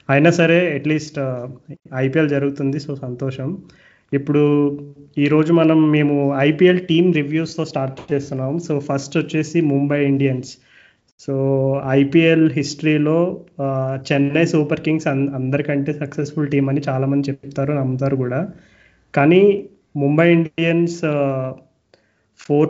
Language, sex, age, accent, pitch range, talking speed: Telugu, male, 20-39, native, 135-150 Hz, 105 wpm